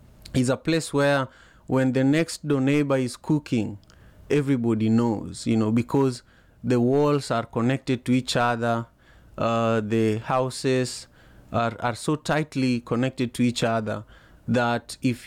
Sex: male